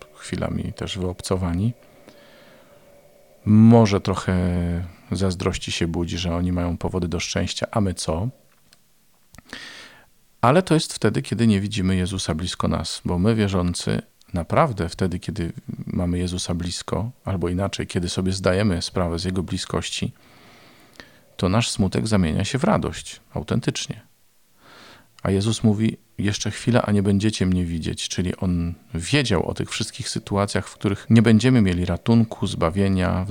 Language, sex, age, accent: Polish, male, 40-59, native